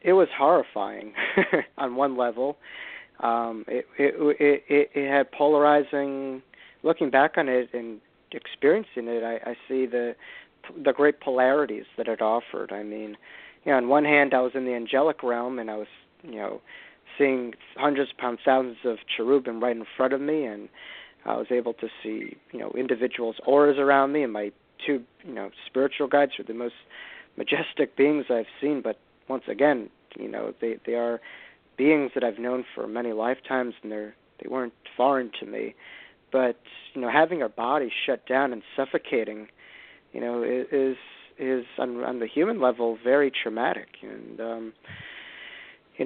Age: 40-59